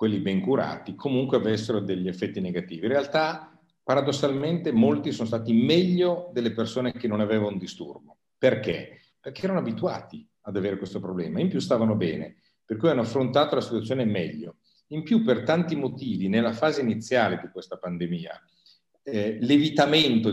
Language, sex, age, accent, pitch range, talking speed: Italian, male, 50-69, native, 105-140 Hz, 160 wpm